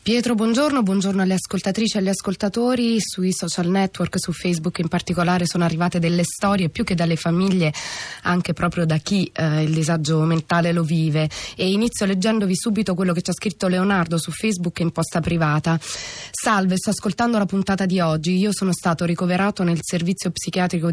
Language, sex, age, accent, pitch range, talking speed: Italian, female, 20-39, native, 165-195 Hz, 180 wpm